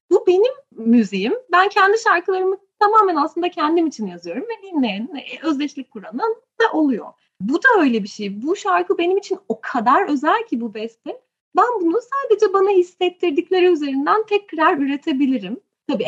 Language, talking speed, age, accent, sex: Turkish, 155 wpm, 30-49, native, female